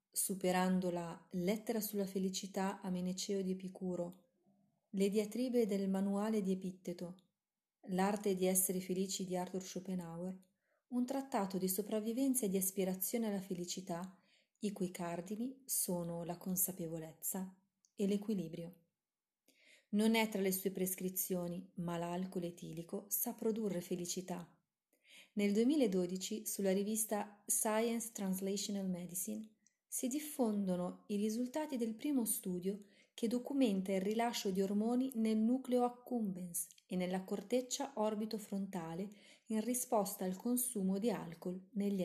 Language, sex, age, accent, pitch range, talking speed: Italian, female, 30-49, native, 185-225 Hz, 120 wpm